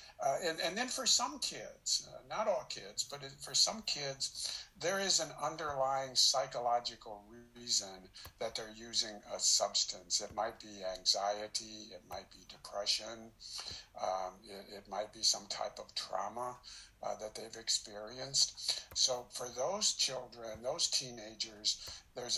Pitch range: 110-135 Hz